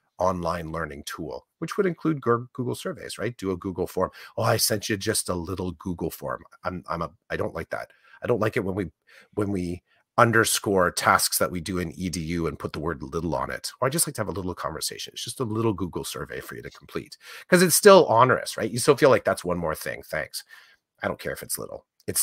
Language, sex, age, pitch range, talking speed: English, male, 40-59, 95-155 Hz, 250 wpm